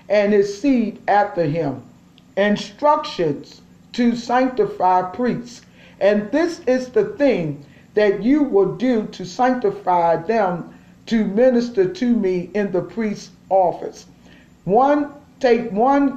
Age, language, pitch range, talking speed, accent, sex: 50-69, English, 180-235 Hz, 120 wpm, American, male